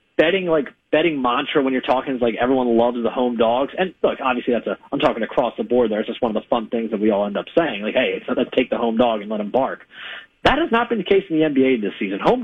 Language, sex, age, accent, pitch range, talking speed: English, male, 40-59, American, 120-155 Hz, 305 wpm